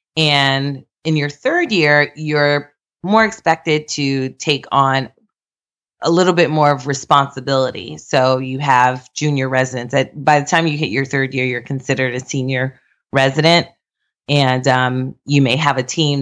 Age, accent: 30-49, American